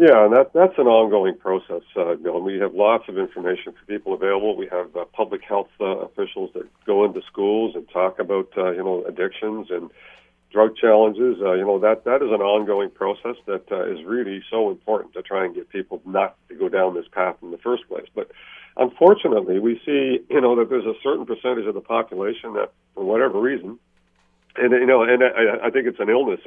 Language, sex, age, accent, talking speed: English, male, 50-69, American, 220 wpm